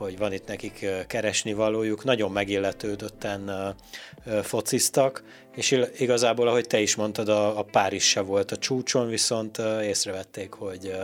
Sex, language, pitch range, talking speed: male, Hungarian, 95-110 Hz, 120 wpm